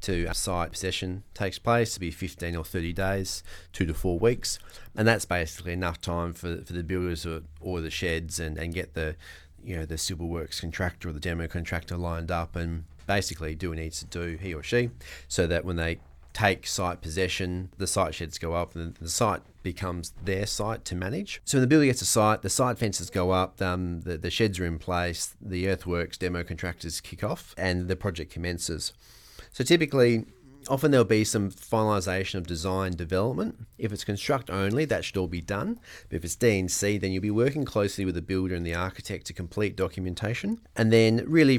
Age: 30-49